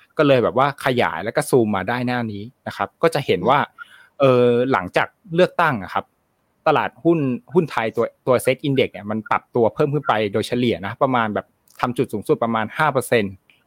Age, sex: 20-39, male